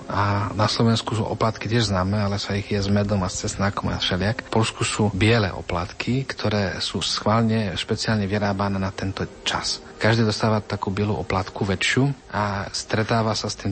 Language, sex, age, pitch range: Slovak, male, 40-59, 100-110 Hz